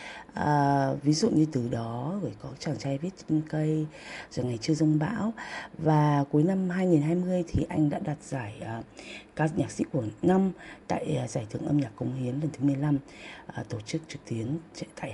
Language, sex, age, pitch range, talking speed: English, female, 20-39, 135-175 Hz, 190 wpm